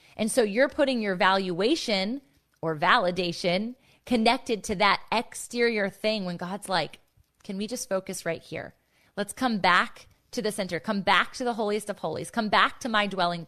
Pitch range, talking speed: 195-235 Hz, 180 wpm